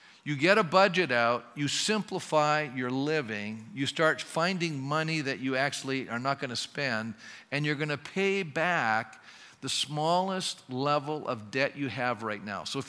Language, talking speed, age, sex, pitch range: English, 170 wpm, 50-69, male, 130-165 Hz